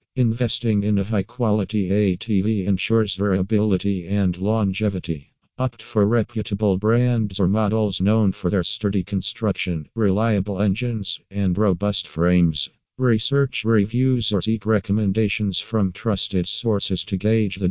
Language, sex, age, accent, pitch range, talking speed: English, male, 50-69, American, 95-110 Hz, 120 wpm